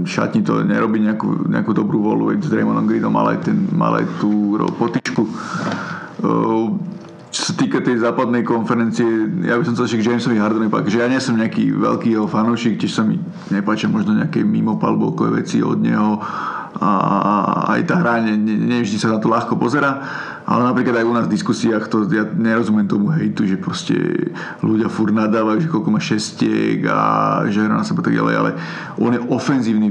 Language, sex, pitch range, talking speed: Slovak, male, 110-120 Hz, 185 wpm